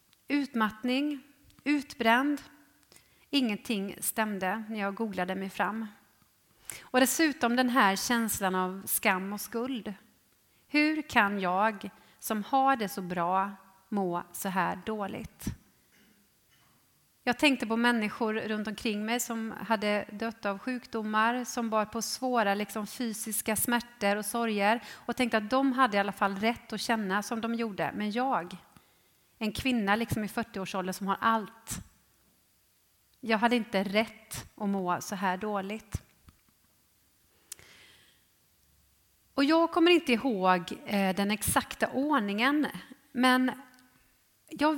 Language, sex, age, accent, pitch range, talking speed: English, female, 30-49, Swedish, 200-245 Hz, 125 wpm